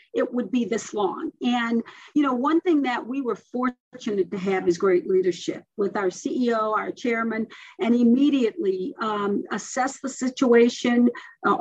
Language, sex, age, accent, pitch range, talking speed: English, female, 50-69, American, 220-275 Hz, 160 wpm